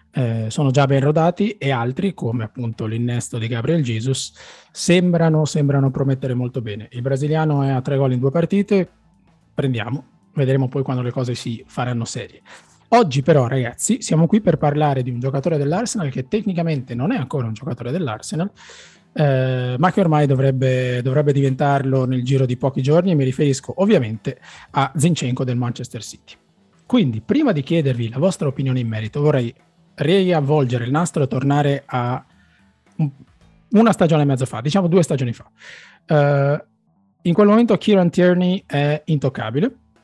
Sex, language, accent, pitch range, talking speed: male, Italian, native, 125-160 Hz, 160 wpm